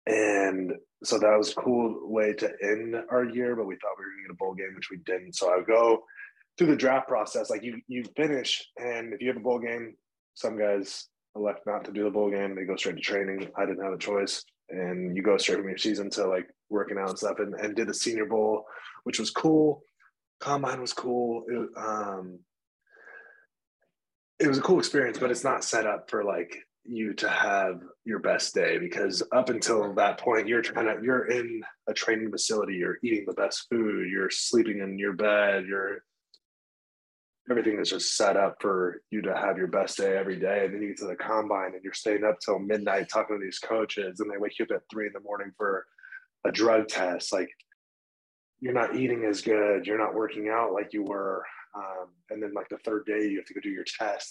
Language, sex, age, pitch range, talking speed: English, male, 20-39, 100-125 Hz, 225 wpm